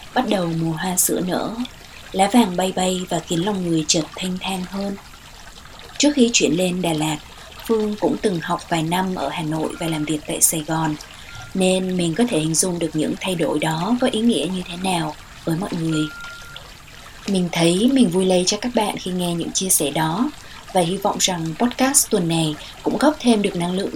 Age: 20-39